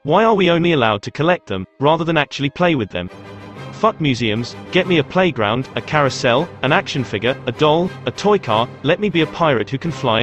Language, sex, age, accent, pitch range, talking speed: English, male, 30-49, British, 120-170 Hz, 225 wpm